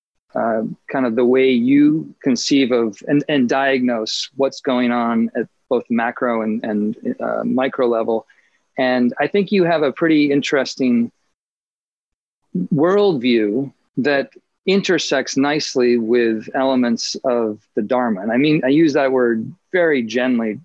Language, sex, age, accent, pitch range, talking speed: English, male, 40-59, American, 120-150 Hz, 140 wpm